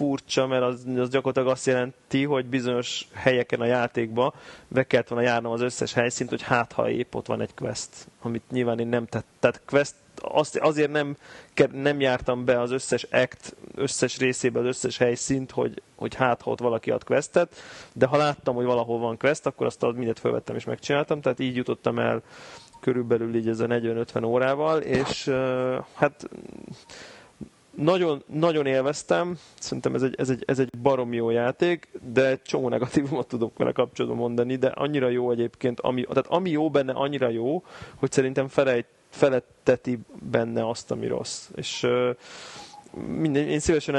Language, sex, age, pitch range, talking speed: Hungarian, male, 30-49, 120-140 Hz, 170 wpm